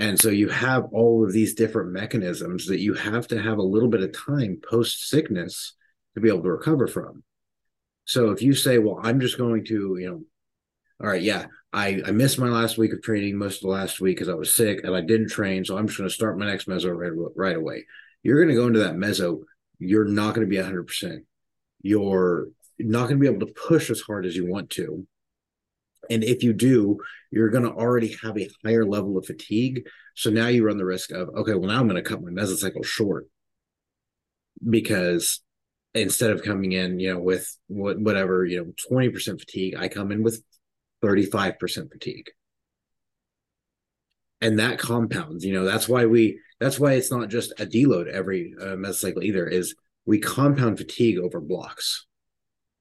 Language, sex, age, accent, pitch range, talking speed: English, male, 30-49, American, 95-115 Hz, 200 wpm